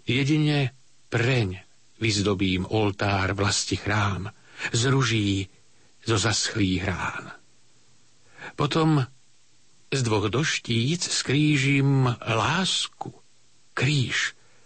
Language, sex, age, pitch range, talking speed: Slovak, male, 50-69, 110-140 Hz, 75 wpm